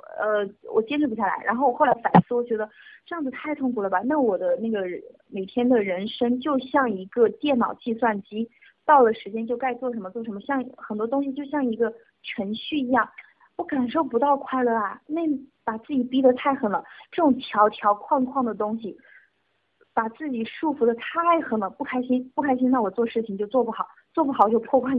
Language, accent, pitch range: Chinese, native, 220-280 Hz